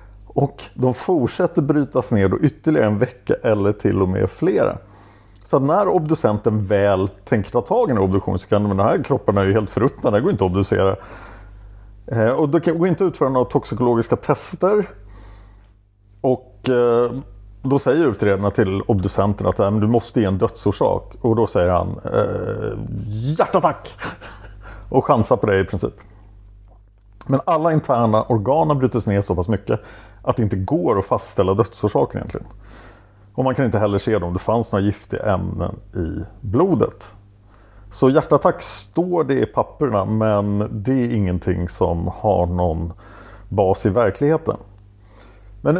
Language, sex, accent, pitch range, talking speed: English, male, Norwegian, 100-130 Hz, 165 wpm